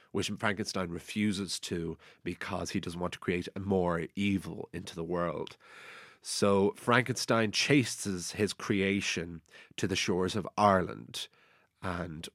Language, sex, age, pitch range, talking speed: English, male, 30-49, 85-115 Hz, 125 wpm